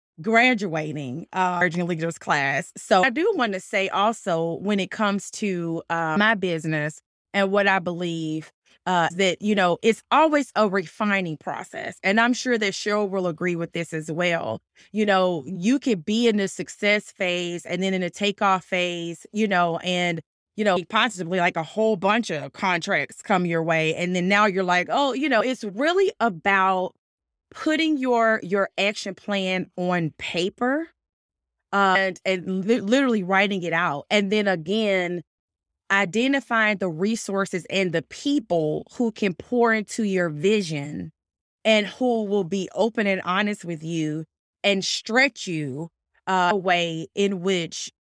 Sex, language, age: female, English, 20-39